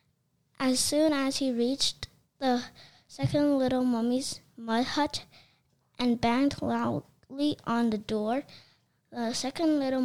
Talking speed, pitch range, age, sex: 120 wpm, 225-255 Hz, 10-29, female